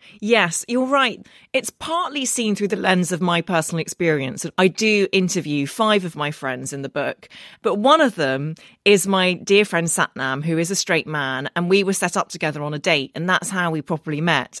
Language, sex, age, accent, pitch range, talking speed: English, female, 30-49, British, 160-210 Hz, 215 wpm